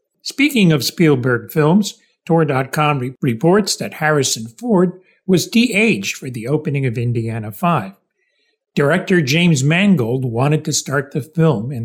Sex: male